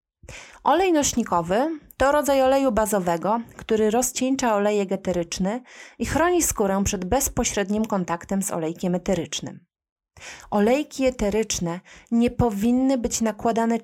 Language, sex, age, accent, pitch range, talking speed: Polish, female, 30-49, native, 195-250 Hz, 110 wpm